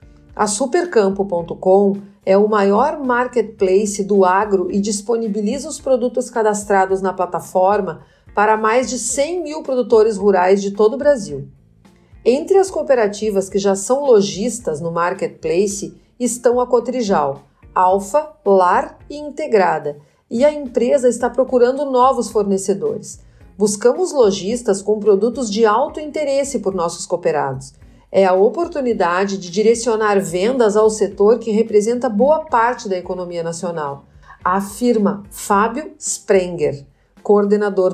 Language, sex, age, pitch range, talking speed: Portuguese, female, 40-59, 190-245 Hz, 125 wpm